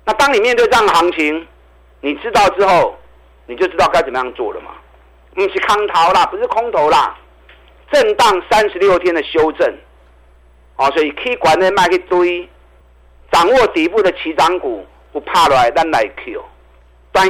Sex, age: male, 50-69